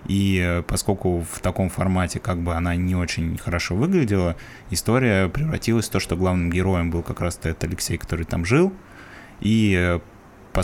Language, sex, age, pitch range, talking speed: Russian, male, 20-39, 90-105 Hz, 165 wpm